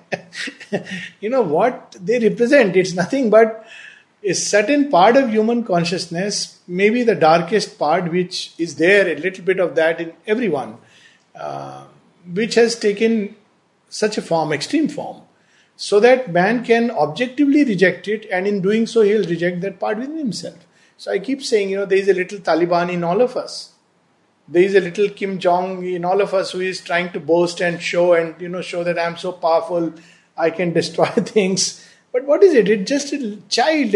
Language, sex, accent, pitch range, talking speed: English, male, Indian, 175-220 Hz, 185 wpm